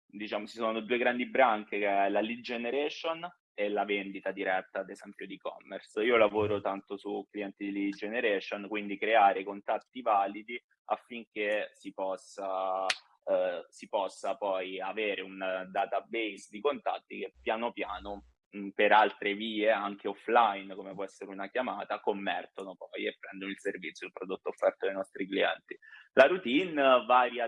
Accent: native